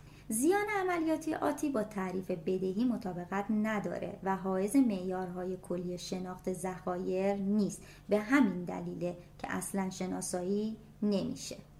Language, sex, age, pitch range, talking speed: Persian, male, 30-49, 185-230 Hz, 110 wpm